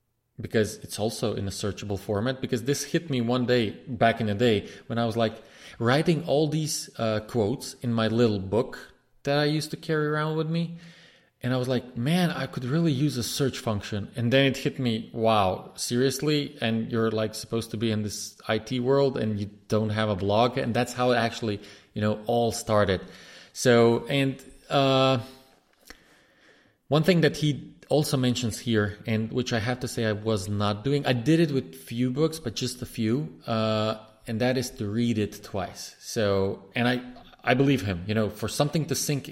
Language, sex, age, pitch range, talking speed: English, male, 20-39, 110-135 Hz, 200 wpm